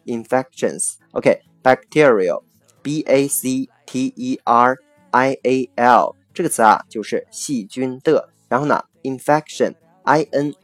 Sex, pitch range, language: male, 115-150 Hz, Chinese